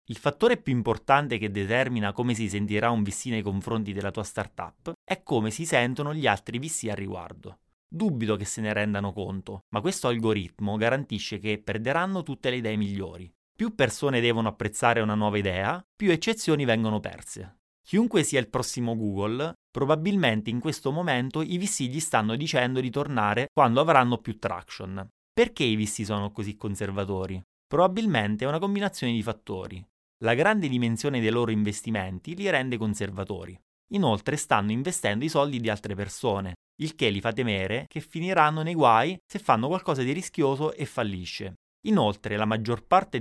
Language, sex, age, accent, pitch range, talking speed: Italian, male, 30-49, native, 105-145 Hz, 170 wpm